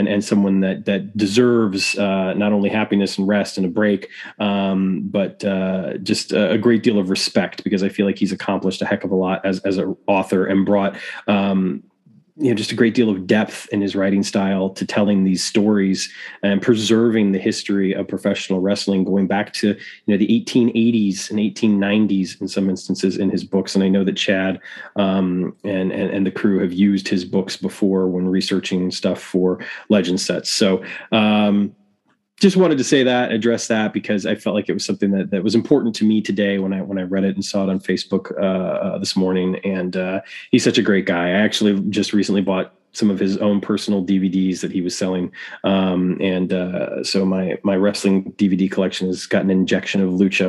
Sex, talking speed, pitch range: male, 210 wpm, 95-105 Hz